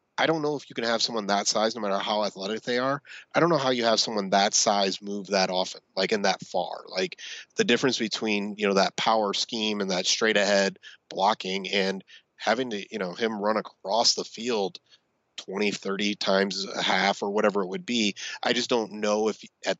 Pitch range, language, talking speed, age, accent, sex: 100-125 Hz, English, 220 wpm, 30-49, American, male